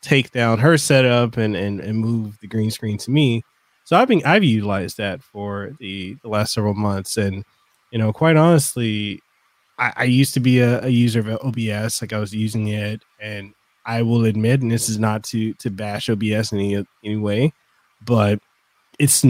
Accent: American